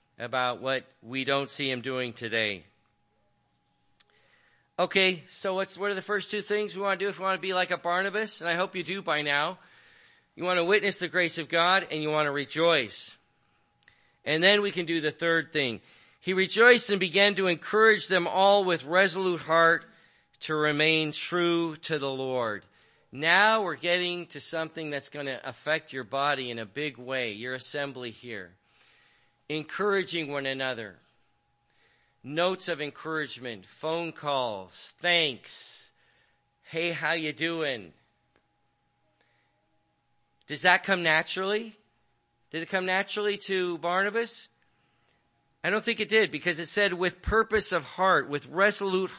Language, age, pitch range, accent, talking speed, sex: English, 40-59, 130-190 Hz, American, 155 wpm, male